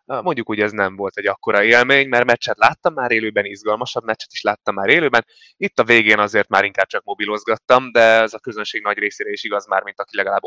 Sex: male